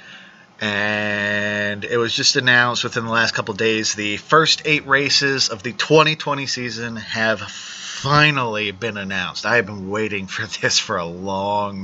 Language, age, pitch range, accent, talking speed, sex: English, 30-49, 100-120 Hz, American, 160 wpm, male